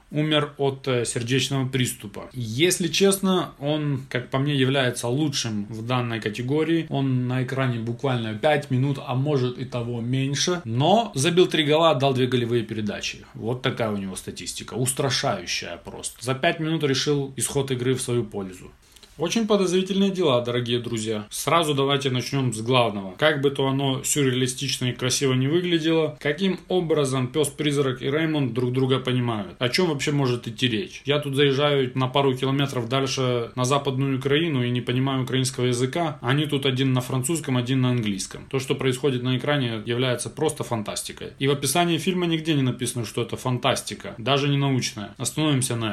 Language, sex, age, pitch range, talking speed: Russian, male, 20-39, 125-150 Hz, 170 wpm